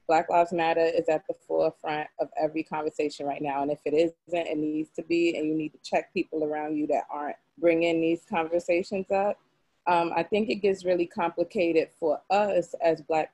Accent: American